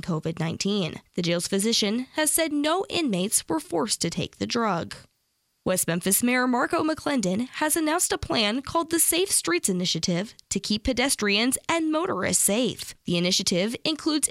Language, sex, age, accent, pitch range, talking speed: English, female, 10-29, American, 190-310 Hz, 155 wpm